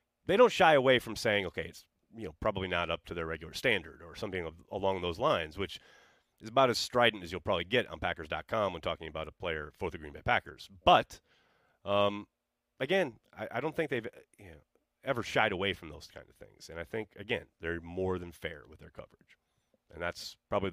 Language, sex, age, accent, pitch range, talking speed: English, male, 30-49, American, 115-180 Hz, 215 wpm